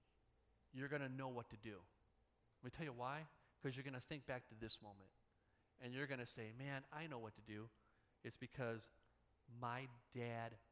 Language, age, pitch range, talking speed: English, 30-49, 120-190 Hz, 200 wpm